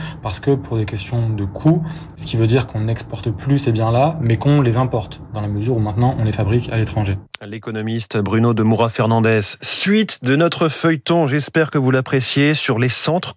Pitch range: 110-145 Hz